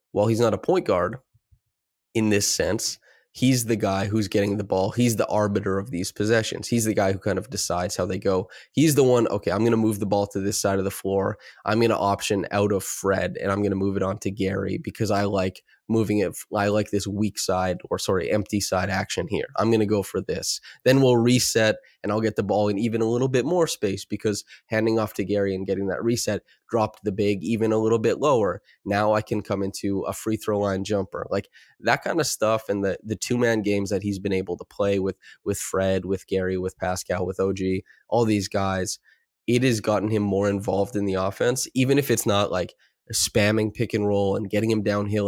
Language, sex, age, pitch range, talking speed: English, male, 20-39, 95-110 Hz, 235 wpm